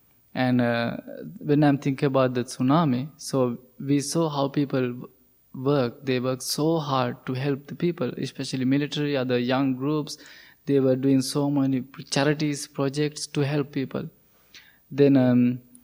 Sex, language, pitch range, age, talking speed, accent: male, English, 130-150 Hz, 20-39, 150 wpm, Indian